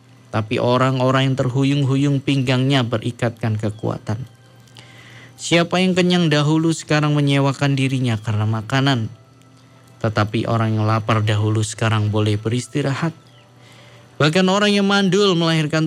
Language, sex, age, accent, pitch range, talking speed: Indonesian, male, 20-39, native, 110-140 Hz, 110 wpm